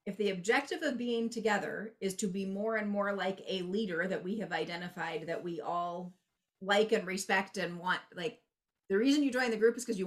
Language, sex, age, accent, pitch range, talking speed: English, female, 30-49, American, 180-235 Hz, 220 wpm